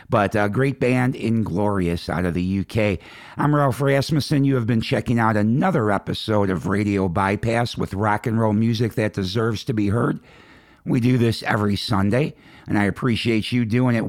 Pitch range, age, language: 100-125 Hz, 50-69, English